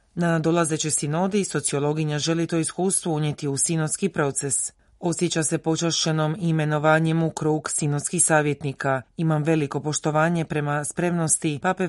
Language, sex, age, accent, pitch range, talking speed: Croatian, female, 30-49, native, 145-170 Hz, 125 wpm